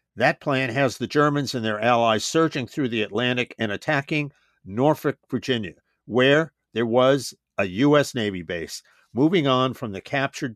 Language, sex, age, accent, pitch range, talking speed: English, male, 50-69, American, 115-145 Hz, 160 wpm